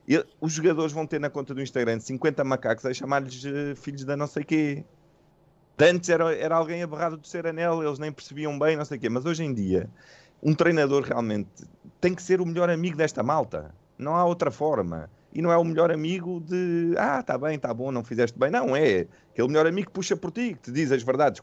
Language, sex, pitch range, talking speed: Portuguese, male, 120-170 Hz, 235 wpm